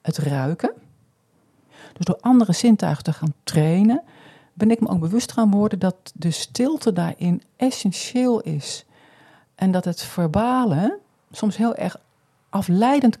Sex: female